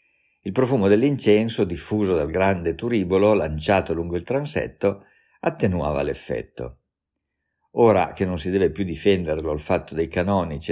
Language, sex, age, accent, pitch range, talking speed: Italian, male, 50-69, native, 85-105 Hz, 135 wpm